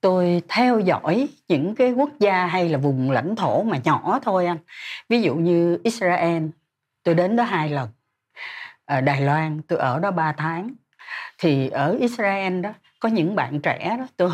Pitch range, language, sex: 165-250 Hz, Vietnamese, female